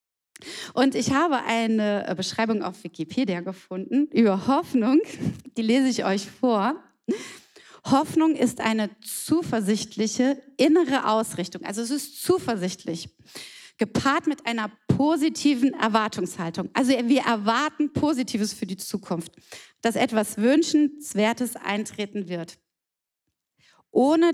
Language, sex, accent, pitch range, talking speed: German, female, German, 210-285 Hz, 105 wpm